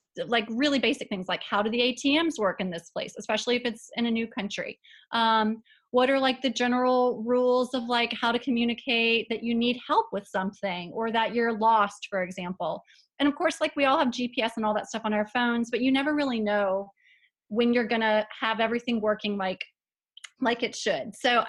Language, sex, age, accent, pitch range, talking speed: English, female, 30-49, American, 210-250 Hz, 210 wpm